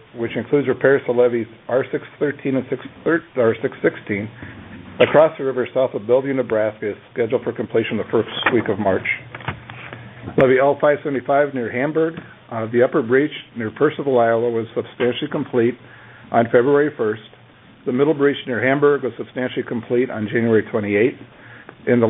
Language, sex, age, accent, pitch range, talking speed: English, male, 50-69, American, 115-135 Hz, 145 wpm